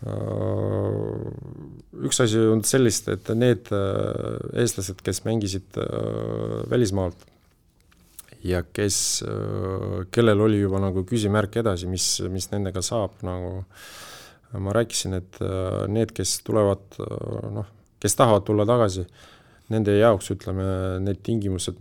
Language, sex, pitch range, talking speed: English, male, 95-115 Hz, 105 wpm